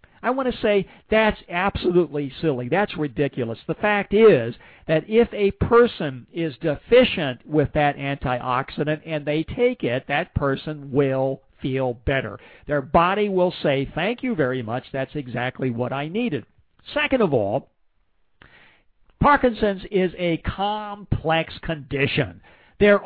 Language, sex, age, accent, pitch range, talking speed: English, male, 50-69, American, 140-205 Hz, 135 wpm